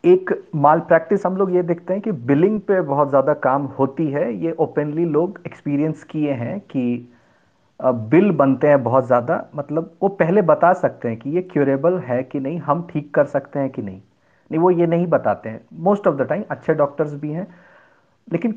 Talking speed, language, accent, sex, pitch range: 200 wpm, Hindi, native, male, 140-200 Hz